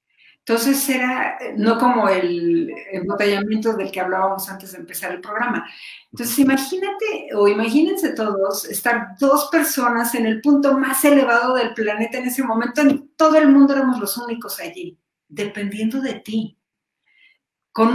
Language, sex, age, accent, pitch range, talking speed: Spanish, female, 50-69, Mexican, 195-255 Hz, 145 wpm